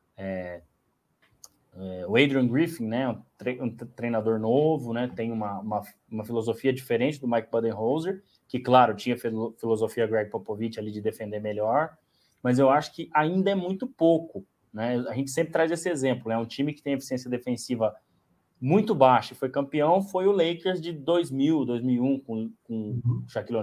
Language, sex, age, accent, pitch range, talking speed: Portuguese, male, 20-39, Brazilian, 110-140 Hz, 175 wpm